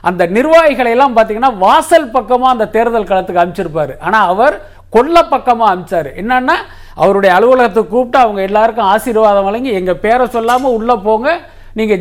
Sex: male